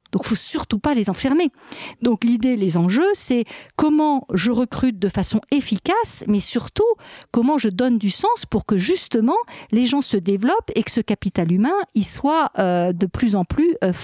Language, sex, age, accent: French, female, 50-69, French